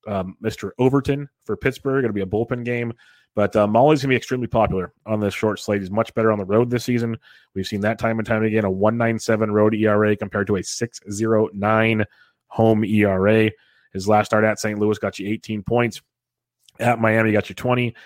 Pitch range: 105-115 Hz